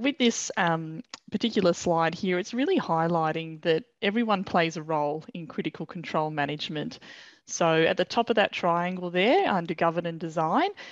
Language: English